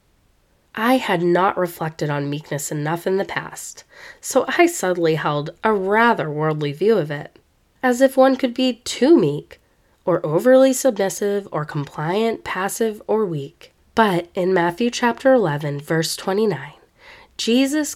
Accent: American